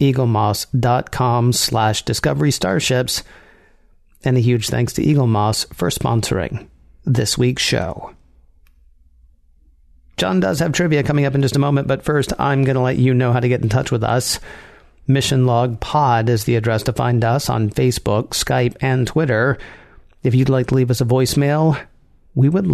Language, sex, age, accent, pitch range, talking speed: English, male, 40-59, American, 115-135 Hz, 165 wpm